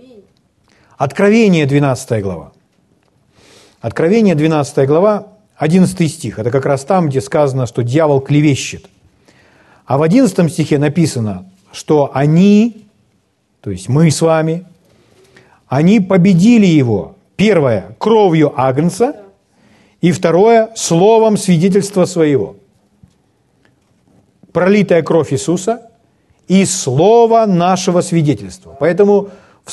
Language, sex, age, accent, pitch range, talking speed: Russian, male, 40-59, native, 140-200 Hz, 100 wpm